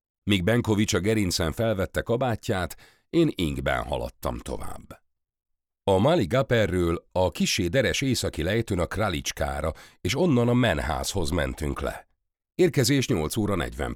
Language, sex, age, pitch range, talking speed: Hungarian, male, 50-69, 80-110 Hz, 125 wpm